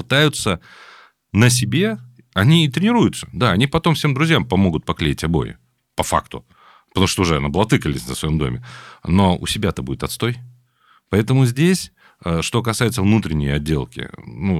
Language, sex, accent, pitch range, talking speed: Russian, male, native, 80-115 Hz, 145 wpm